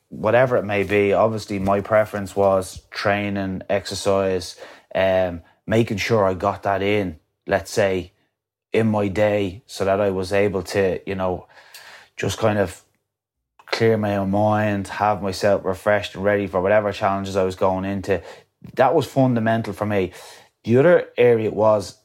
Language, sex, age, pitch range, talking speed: English, male, 20-39, 95-105 Hz, 160 wpm